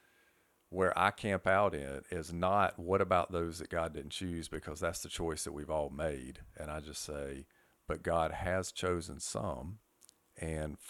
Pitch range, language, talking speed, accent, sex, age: 80-90 Hz, English, 175 wpm, American, male, 50-69